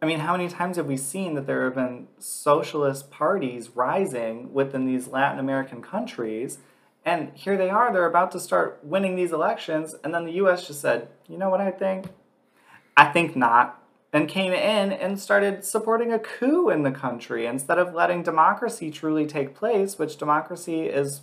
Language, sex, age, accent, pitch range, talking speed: English, male, 30-49, American, 135-195 Hz, 185 wpm